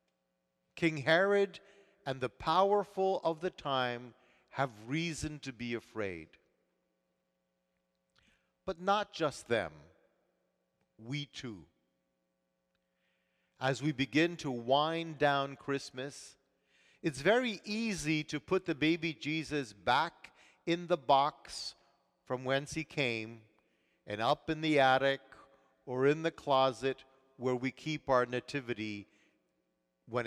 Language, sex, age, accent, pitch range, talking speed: English, male, 50-69, American, 105-160 Hz, 115 wpm